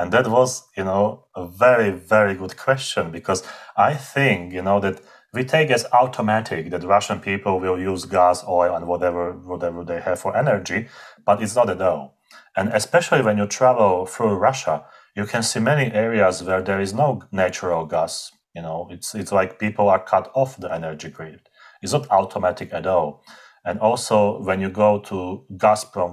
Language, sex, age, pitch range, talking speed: English, male, 30-49, 90-115 Hz, 190 wpm